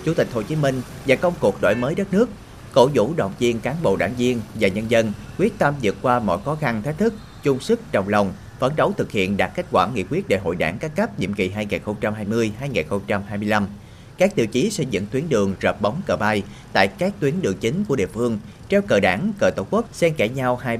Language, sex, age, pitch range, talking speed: Vietnamese, male, 30-49, 105-145 Hz, 235 wpm